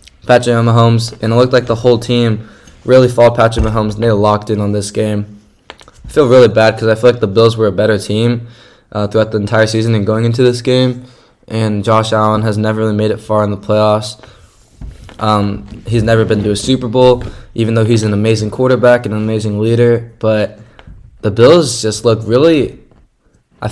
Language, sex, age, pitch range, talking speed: English, male, 10-29, 105-115 Hz, 205 wpm